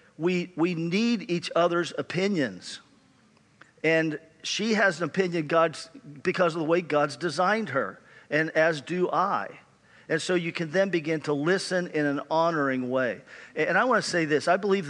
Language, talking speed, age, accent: English, 175 wpm, 50-69, American